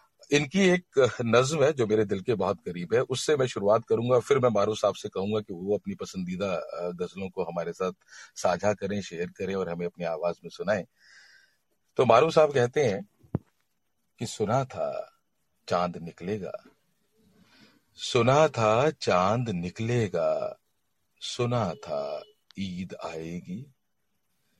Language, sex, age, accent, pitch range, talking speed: Hindi, male, 40-59, native, 90-140 Hz, 140 wpm